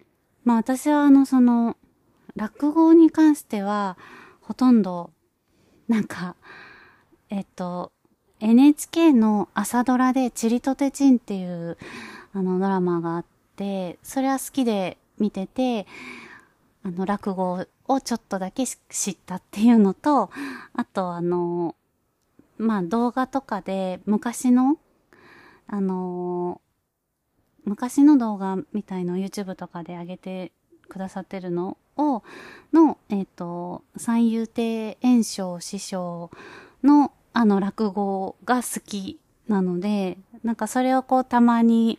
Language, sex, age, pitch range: Japanese, female, 30-49, 190-255 Hz